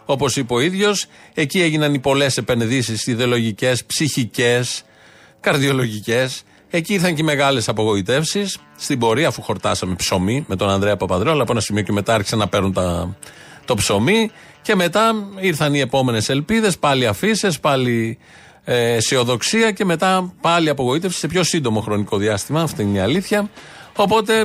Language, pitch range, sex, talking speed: Greek, 115-160 Hz, male, 155 wpm